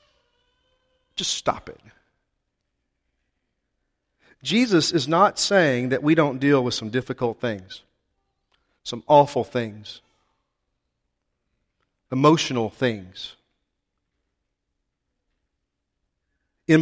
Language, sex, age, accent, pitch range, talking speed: English, male, 40-59, American, 110-160 Hz, 75 wpm